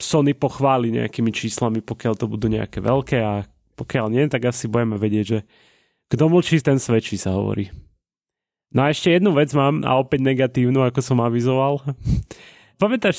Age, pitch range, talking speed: 30-49, 120-145 Hz, 165 wpm